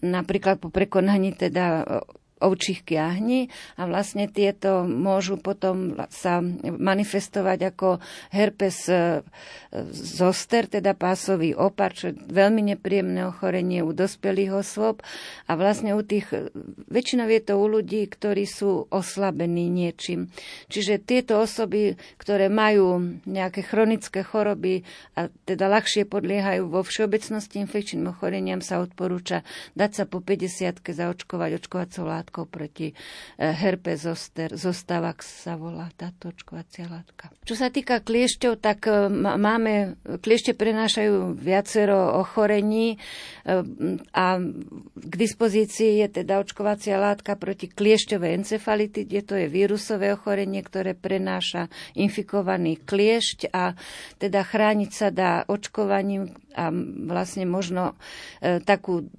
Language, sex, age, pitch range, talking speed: Slovak, female, 40-59, 180-205 Hz, 110 wpm